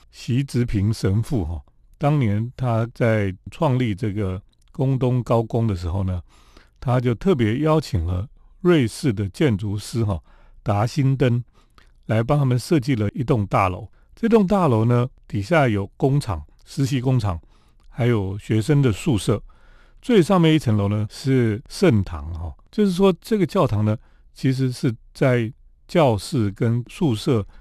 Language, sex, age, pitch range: Chinese, male, 40-59, 100-150 Hz